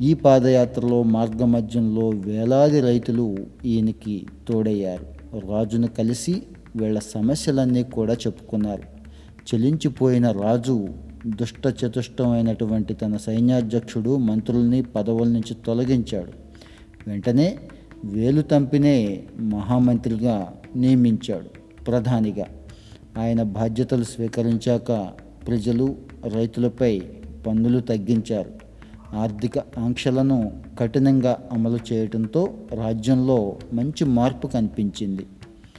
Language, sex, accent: Telugu, male, native